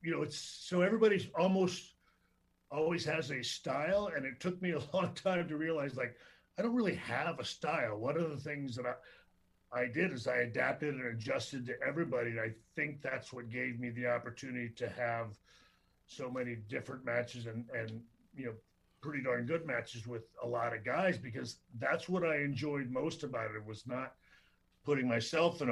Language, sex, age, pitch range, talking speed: English, male, 50-69, 120-155 Hz, 190 wpm